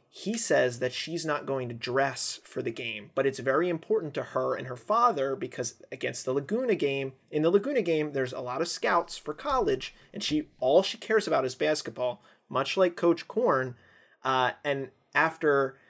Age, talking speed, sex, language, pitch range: 30-49, 195 wpm, male, English, 125-165 Hz